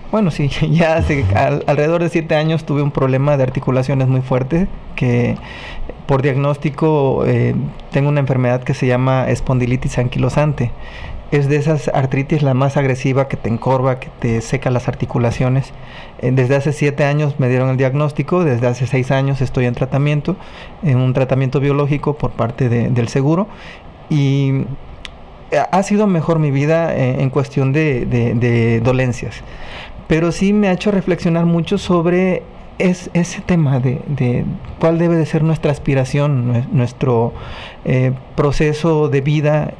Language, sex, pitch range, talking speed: Spanish, male, 130-160 Hz, 155 wpm